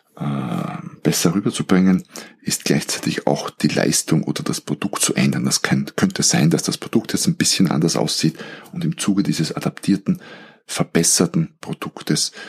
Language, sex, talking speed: German, male, 145 wpm